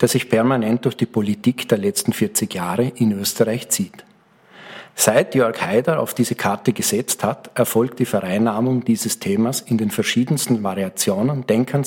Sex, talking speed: male, 155 wpm